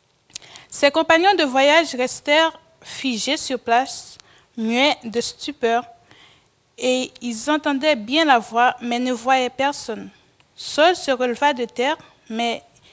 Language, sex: French, female